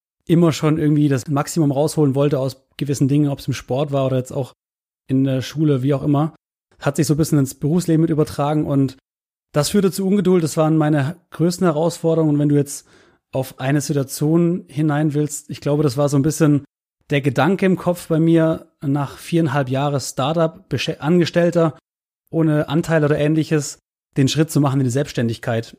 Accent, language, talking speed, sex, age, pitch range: German, German, 190 wpm, male, 30-49, 140-160 Hz